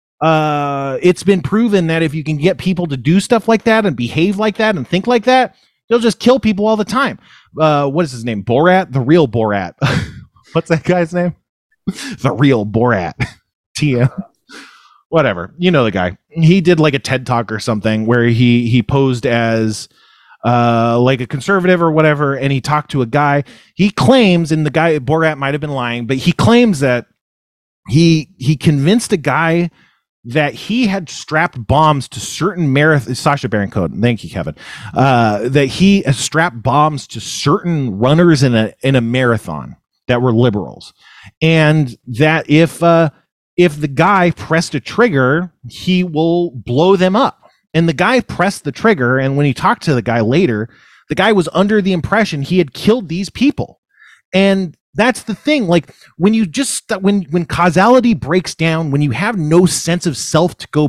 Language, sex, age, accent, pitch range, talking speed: English, male, 30-49, American, 130-180 Hz, 185 wpm